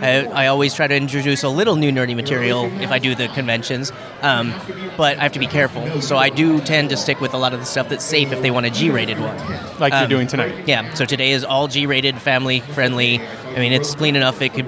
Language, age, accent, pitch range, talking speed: English, 30-49, American, 125-150 Hz, 250 wpm